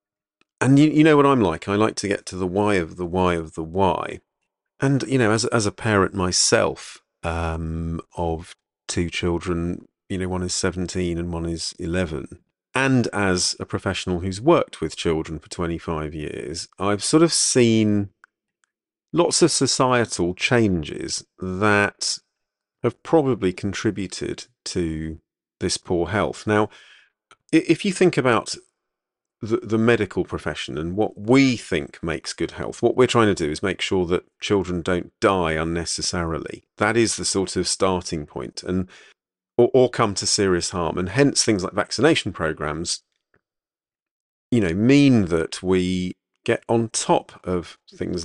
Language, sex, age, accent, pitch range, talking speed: English, male, 40-59, British, 85-110 Hz, 160 wpm